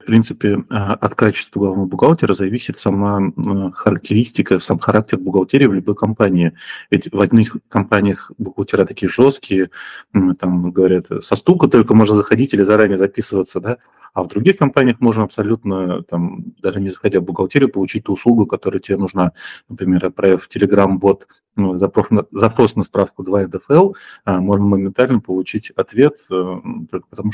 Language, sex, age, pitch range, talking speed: Russian, male, 30-49, 95-110 Hz, 150 wpm